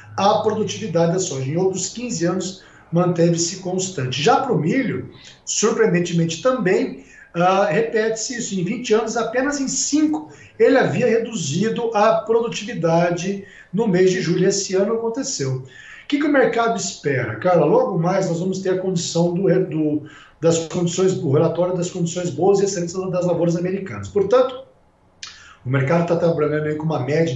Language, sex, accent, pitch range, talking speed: Portuguese, male, Brazilian, 160-200 Hz, 160 wpm